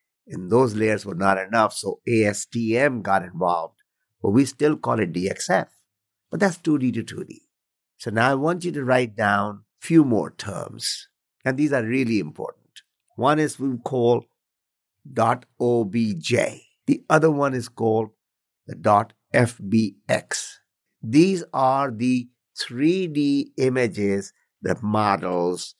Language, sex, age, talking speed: English, male, 50-69, 130 wpm